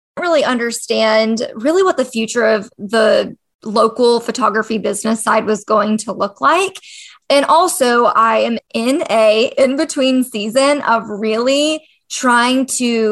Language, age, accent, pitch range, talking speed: English, 20-39, American, 220-270 Hz, 135 wpm